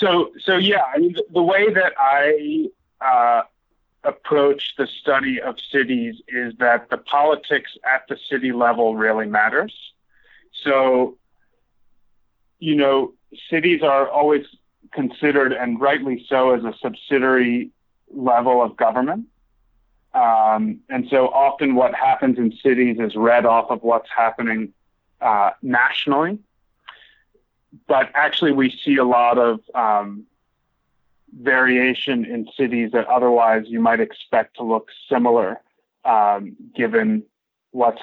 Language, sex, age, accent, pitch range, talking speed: English, male, 30-49, American, 115-145 Hz, 125 wpm